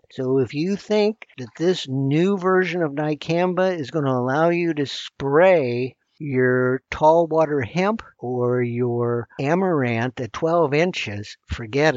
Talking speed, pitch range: 140 wpm, 120-155 Hz